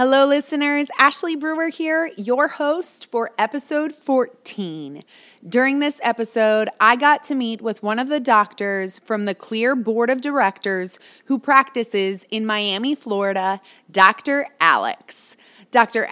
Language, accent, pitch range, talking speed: English, American, 195-260 Hz, 135 wpm